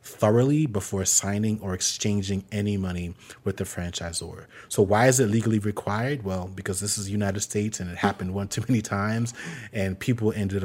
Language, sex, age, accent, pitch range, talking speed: English, male, 30-49, American, 95-115 Hz, 185 wpm